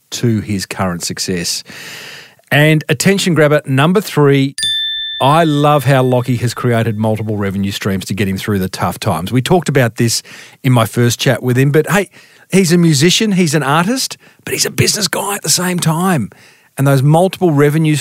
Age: 40-59